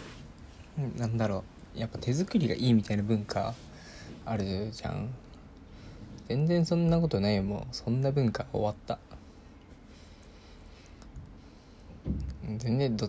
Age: 20-39